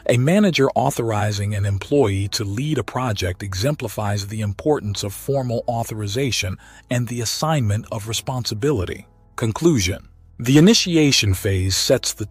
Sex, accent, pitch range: male, American, 100-135 Hz